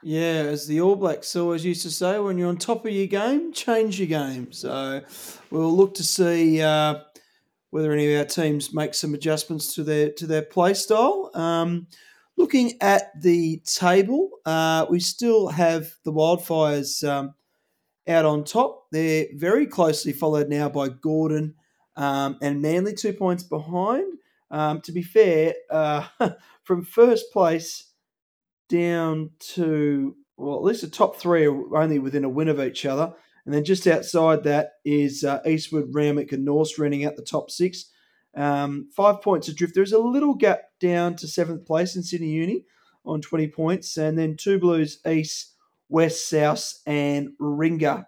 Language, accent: English, Australian